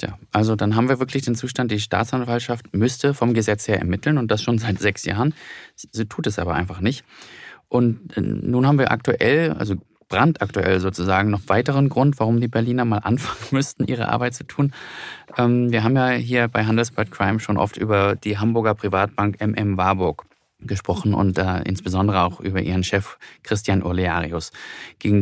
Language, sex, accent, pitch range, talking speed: German, male, German, 100-125 Hz, 175 wpm